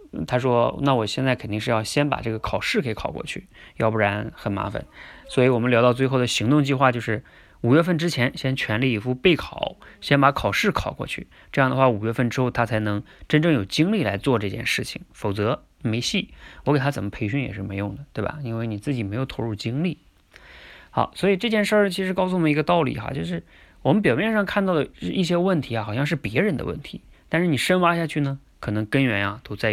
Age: 20-39